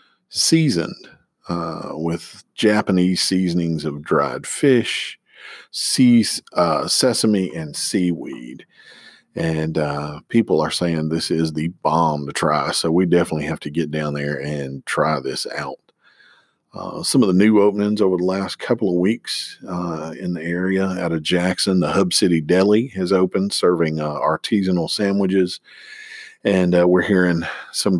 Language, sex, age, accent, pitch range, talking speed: English, male, 50-69, American, 80-95 Hz, 150 wpm